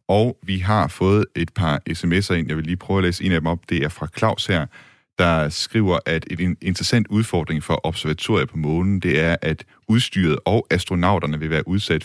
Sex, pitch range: male, 75-95 Hz